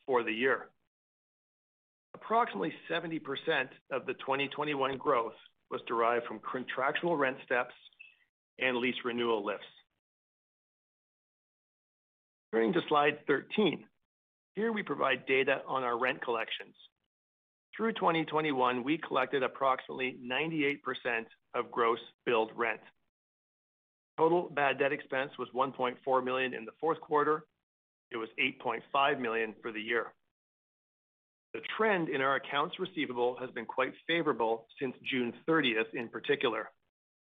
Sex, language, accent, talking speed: male, English, American, 120 wpm